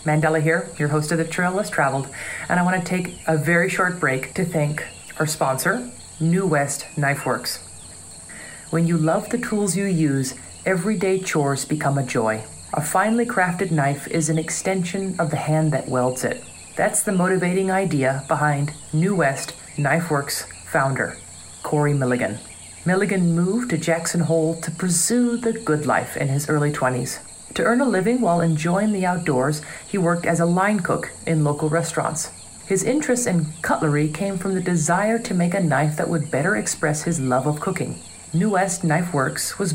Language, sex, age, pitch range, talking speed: English, female, 40-59, 150-185 Hz, 175 wpm